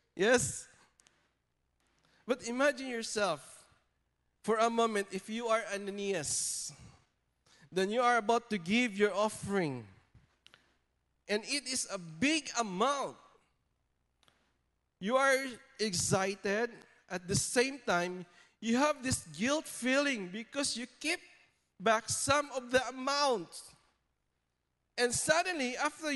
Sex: male